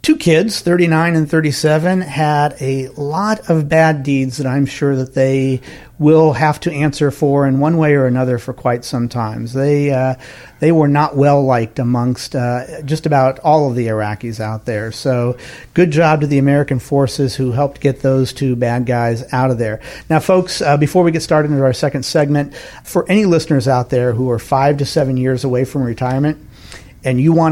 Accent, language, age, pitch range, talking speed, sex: American, English, 50-69, 125-155 Hz, 200 wpm, male